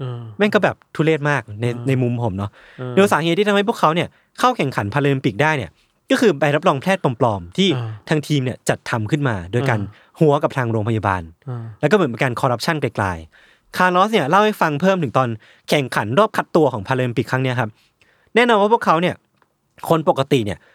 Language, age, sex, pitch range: Thai, 20-39, male, 120-170 Hz